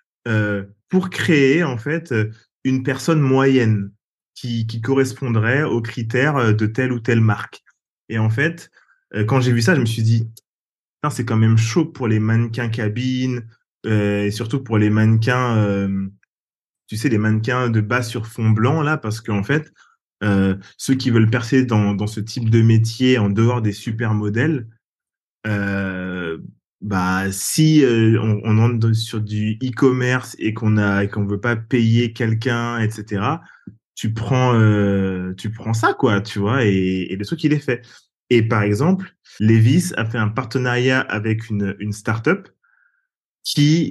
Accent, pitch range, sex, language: French, 110-130 Hz, male, French